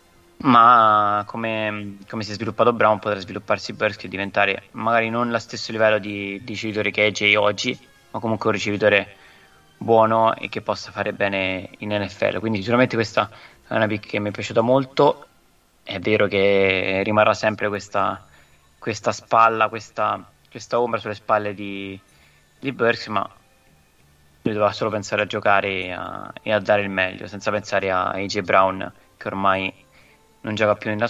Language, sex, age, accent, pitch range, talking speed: Italian, male, 20-39, native, 100-115 Hz, 170 wpm